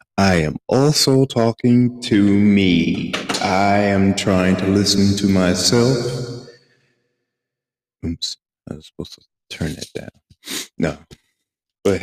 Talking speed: 115 wpm